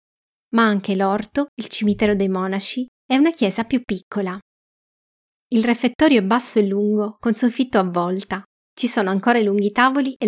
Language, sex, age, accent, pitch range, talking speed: Italian, female, 20-39, native, 195-230 Hz, 170 wpm